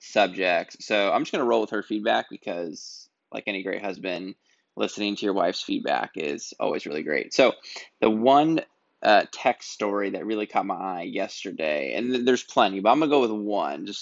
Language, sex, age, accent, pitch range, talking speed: English, male, 20-39, American, 95-105 Hz, 200 wpm